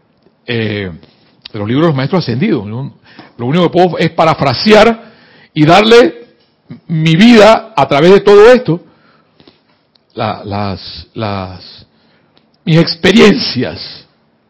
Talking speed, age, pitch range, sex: 120 wpm, 60-79, 135-185 Hz, male